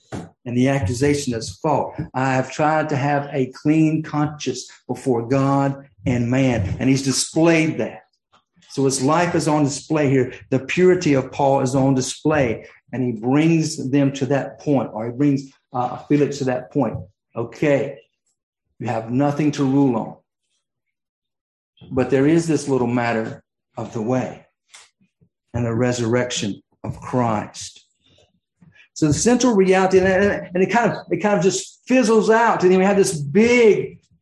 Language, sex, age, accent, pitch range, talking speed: English, male, 50-69, American, 135-200 Hz, 160 wpm